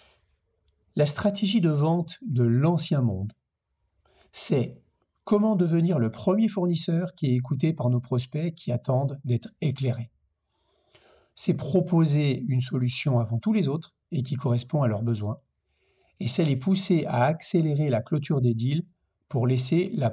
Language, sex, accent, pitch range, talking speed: French, male, French, 125-165 Hz, 150 wpm